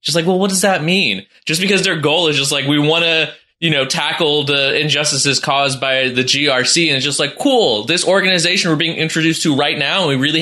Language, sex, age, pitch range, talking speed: English, male, 20-39, 150-220 Hz, 235 wpm